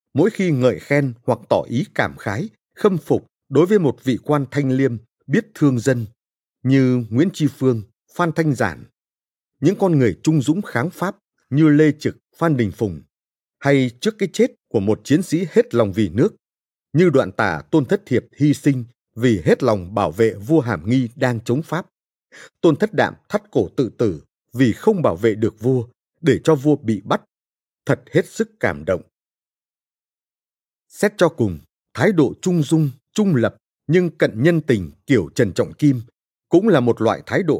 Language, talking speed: Vietnamese, 190 wpm